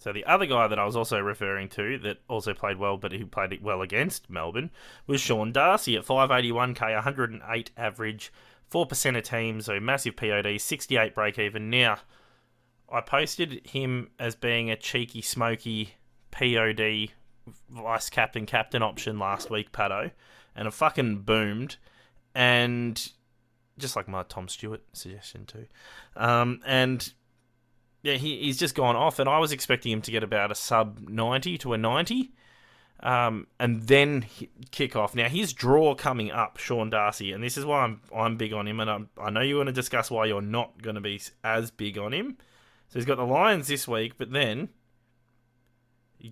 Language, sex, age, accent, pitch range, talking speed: English, male, 20-39, Australian, 110-130 Hz, 175 wpm